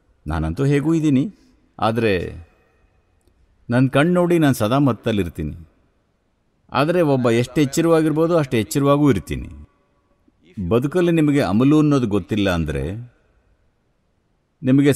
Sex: male